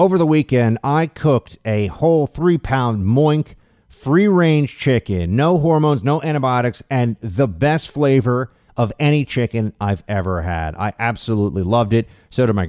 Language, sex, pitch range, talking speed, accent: English, male, 105-150 Hz, 150 wpm, American